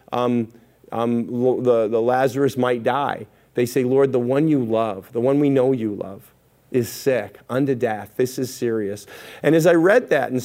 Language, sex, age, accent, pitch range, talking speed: English, male, 40-59, American, 115-135 Hz, 190 wpm